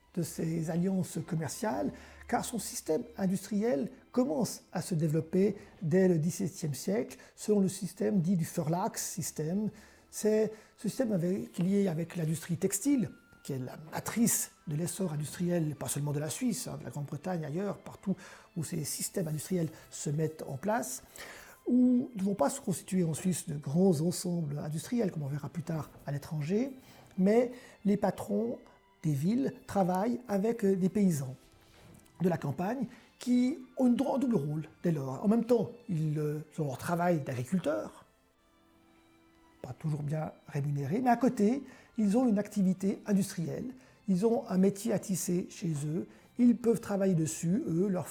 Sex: male